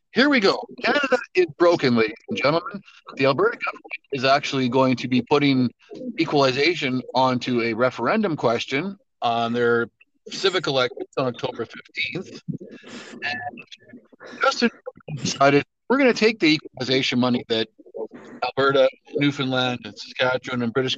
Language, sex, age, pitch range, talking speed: English, male, 50-69, 125-185 Hz, 130 wpm